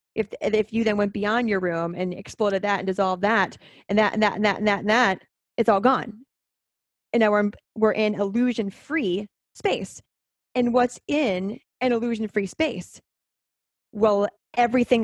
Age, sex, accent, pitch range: 30-49, female, American, 180-230 Hz